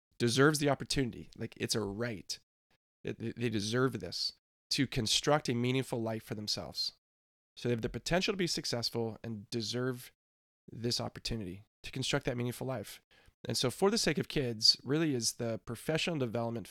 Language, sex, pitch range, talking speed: English, male, 110-140 Hz, 165 wpm